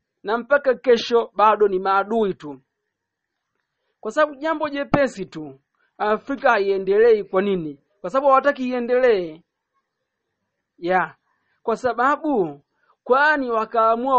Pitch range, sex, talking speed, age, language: 195-275 Hz, male, 110 wpm, 40-59, Swahili